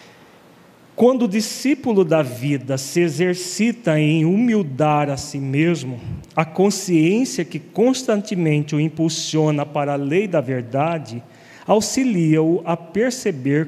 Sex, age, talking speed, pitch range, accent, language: male, 40-59, 115 wpm, 145-195 Hz, Brazilian, Portuguese